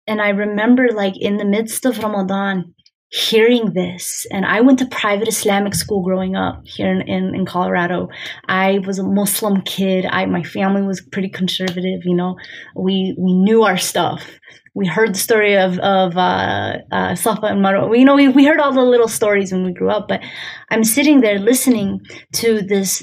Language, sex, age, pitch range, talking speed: English, female, 20-39, 185-235 Hz, 195 wpm